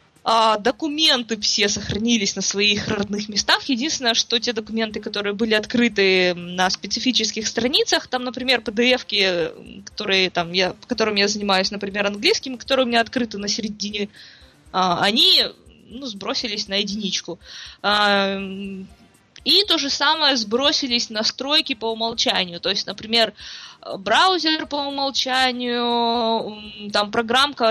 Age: 20-39